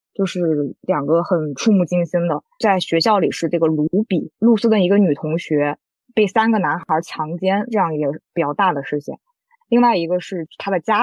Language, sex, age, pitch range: Chinese, female, 20-39, 170-225 Hz